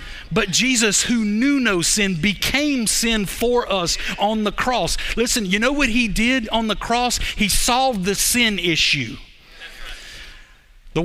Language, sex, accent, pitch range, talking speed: English, male, American, 190-240 Hz, 150 wpm